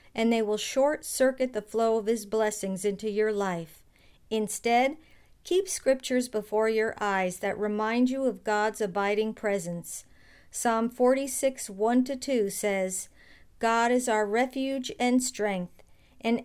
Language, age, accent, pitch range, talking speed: English, 50-69, American, 210-255 Hz, 130 wpm